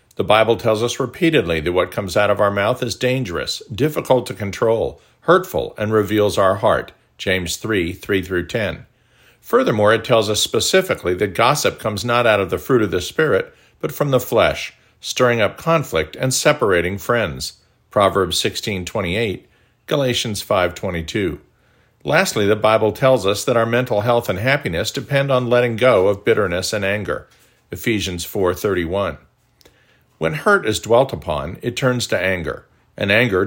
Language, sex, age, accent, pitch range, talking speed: English, male, 50-69, American, 95-125 Hz, 165 wpm